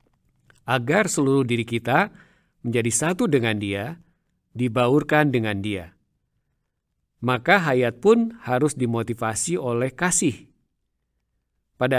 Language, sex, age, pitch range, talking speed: Indonesian, male, 50-69, 115-160 Hz, 95 wpm